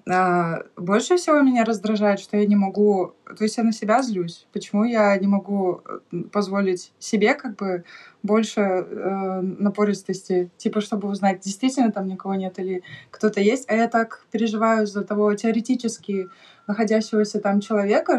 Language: Russian